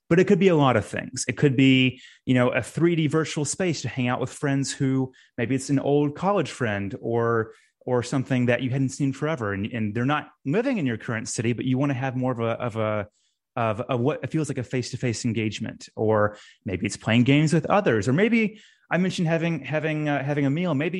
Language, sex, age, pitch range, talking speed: English, male, 30-49, 115-150 Hz, 235 wpm